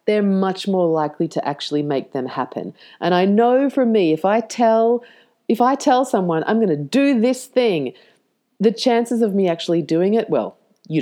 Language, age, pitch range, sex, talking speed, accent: English, 40-59, 160-225 Hz, female, 195 wpm, Australian